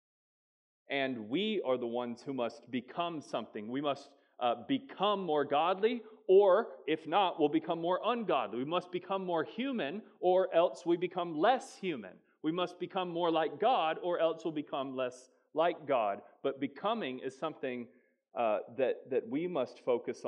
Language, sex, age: English, male, 30-49